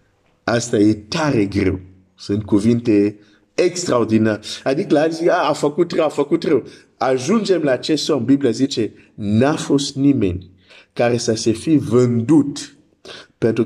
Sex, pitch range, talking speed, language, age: male, 100-135 Hz, 135 wpm, Romanian, 50-69